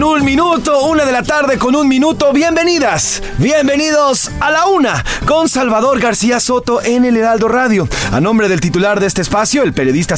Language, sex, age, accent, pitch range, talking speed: Spanish, male, 30-49, Mexican, 165-240 Hz, 185 wpm